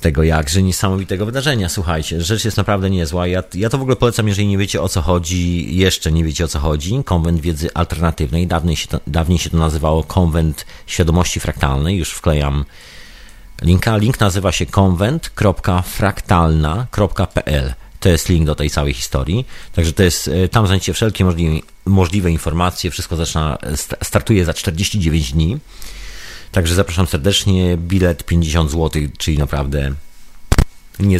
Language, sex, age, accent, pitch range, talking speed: Polish, male, 40-59, native, 80-100 Hz, 150 wpm